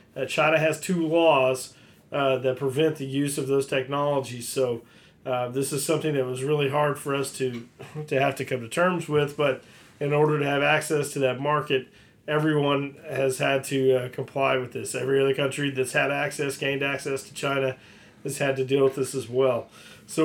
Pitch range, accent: 130-150 Hz, American